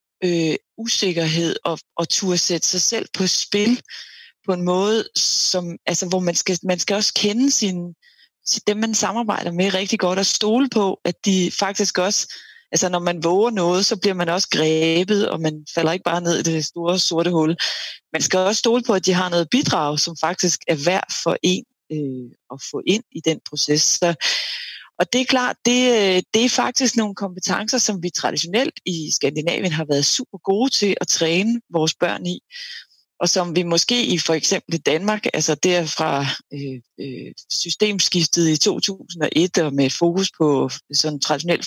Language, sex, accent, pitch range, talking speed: Danish, female, native, 160-205 Hz, 185 wpm